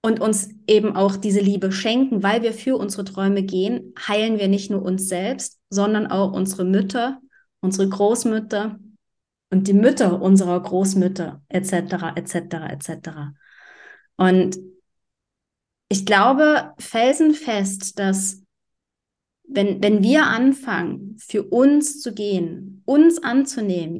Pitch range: 190-225 Hz